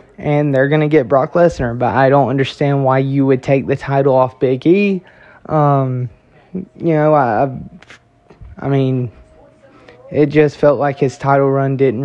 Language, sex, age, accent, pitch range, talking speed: English, male, 20-39, American, 125-150 Hz, 170 wpm